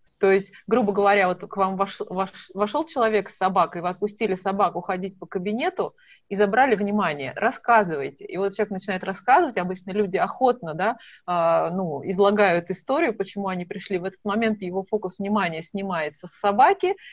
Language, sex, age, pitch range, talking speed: Russian, female, 30-49, 180-210 Hz, 160 wpm